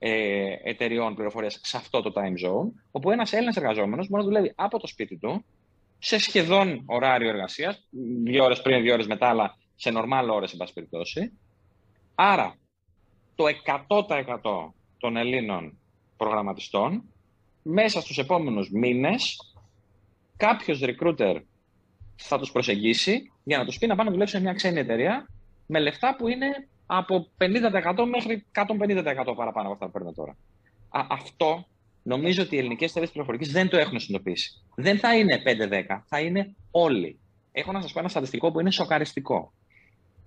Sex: male